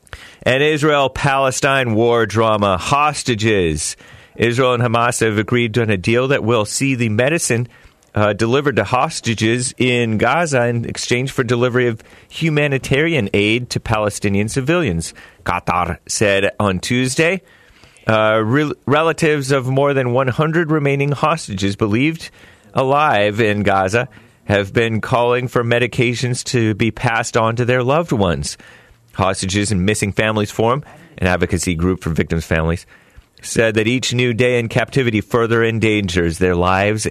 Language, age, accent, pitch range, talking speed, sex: English, 40-59, American, 100-125 Hz, 135 wpm, male